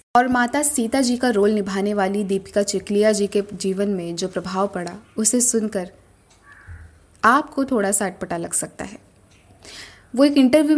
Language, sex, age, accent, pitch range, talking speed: Hindi, female, 20-39, native, 185-240 Hz, 160 wpm